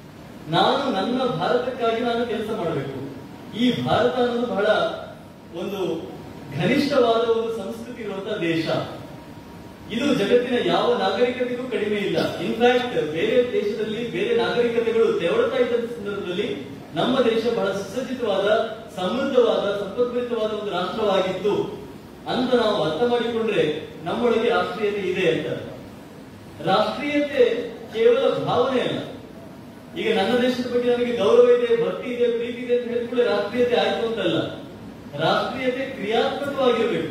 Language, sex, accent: Kannada, male, native